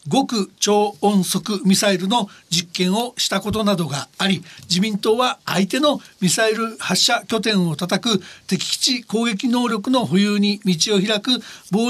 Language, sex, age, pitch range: Japanese, male, 60-79, 185-240 Hz